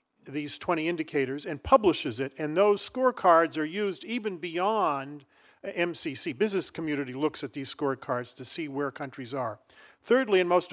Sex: male